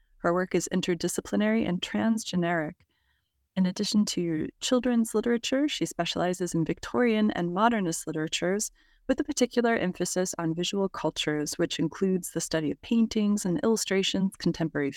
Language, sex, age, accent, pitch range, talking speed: English, female, 30-49, American, 165-220 Hz, 135 wpm